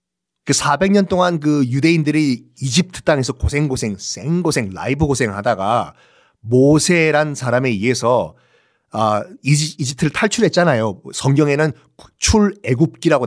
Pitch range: 130-170 Hz